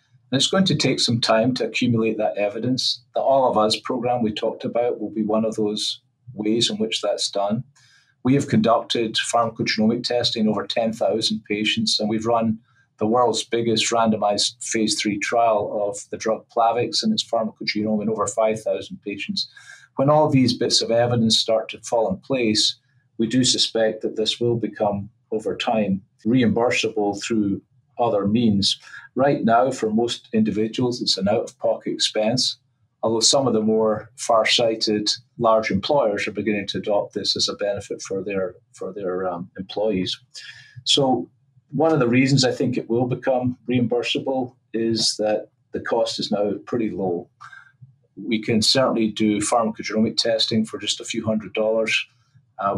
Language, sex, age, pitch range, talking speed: English, male, 40-59, 110-125 Hz, 165 wpm